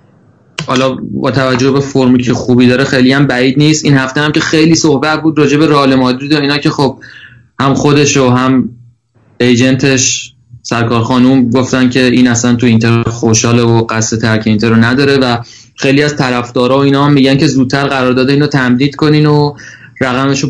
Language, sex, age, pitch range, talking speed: Persian, male, 20-39, 120-140 Hz, 180 wpm